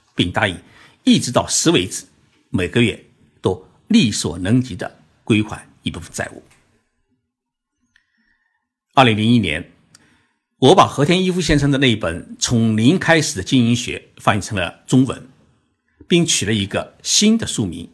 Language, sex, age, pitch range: Chinese, male, 50-69, 95-140 Hz